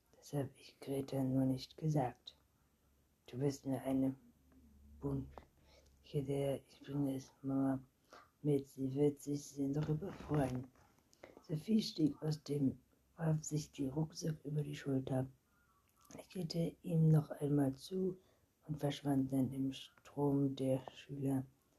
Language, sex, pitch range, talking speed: German, female, 130-145 Hz, 130 wpm